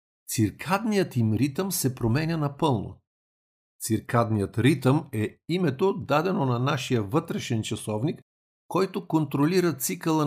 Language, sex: Bulgarian, male